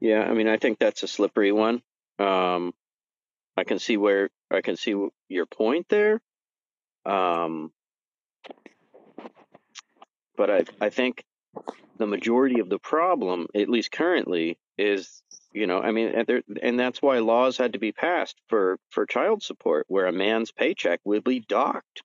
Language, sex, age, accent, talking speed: English, male, 40-59, American, 160 wpm